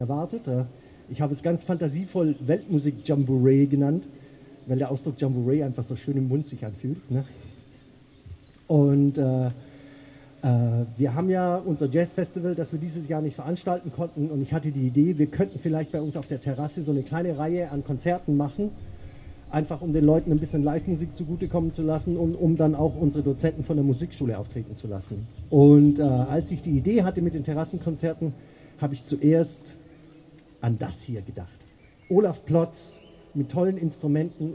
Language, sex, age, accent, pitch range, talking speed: English, male, 40-59, German, 135-165 Hz, 170 wpm